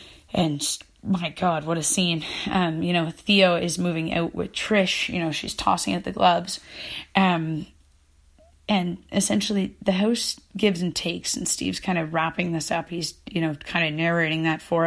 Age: 30-49